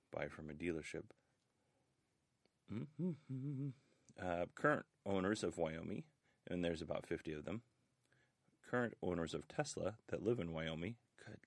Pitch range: 80-95 Hz